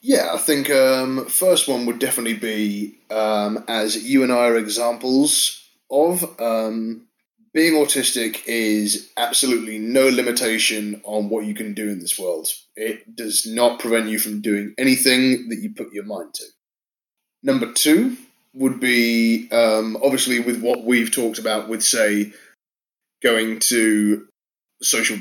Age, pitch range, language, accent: 20-39, 110-135 Hz, English, British